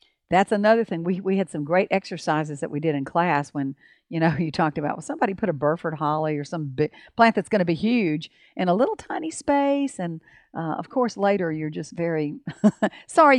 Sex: female